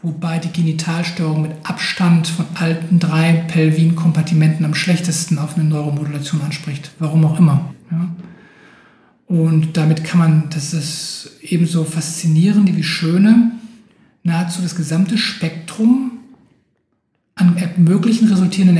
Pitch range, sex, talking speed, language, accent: 165-200 Hz, male, 110 wpm, German, German